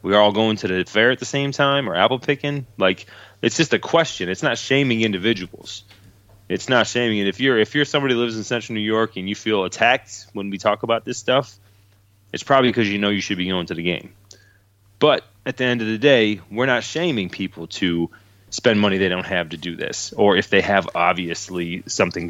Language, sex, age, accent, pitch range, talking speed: English, male, 30-49, American, 95-115 Hz, 230 wpm